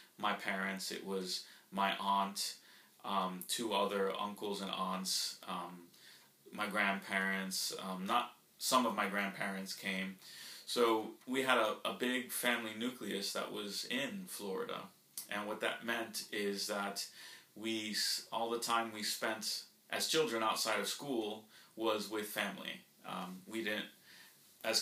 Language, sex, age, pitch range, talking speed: English, male, 30-49, 95-110 Hz, 140 wpm